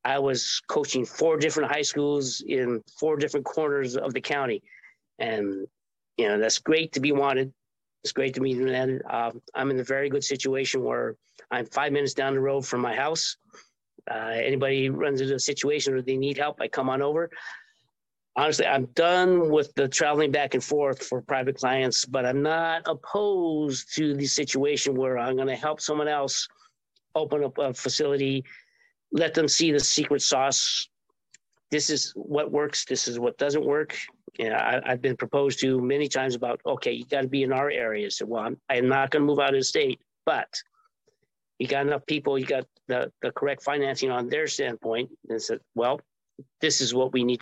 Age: 50-69